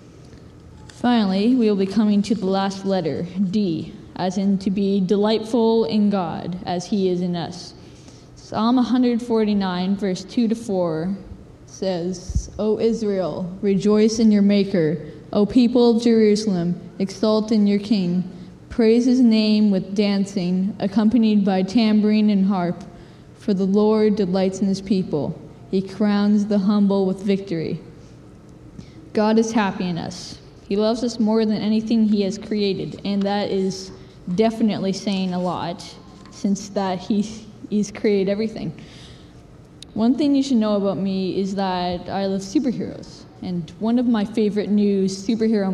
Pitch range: 185-215 Hz